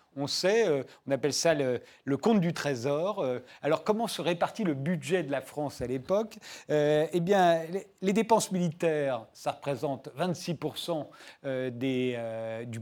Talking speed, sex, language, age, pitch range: 160 wpm, male, French, 40-59, 140-185 Hz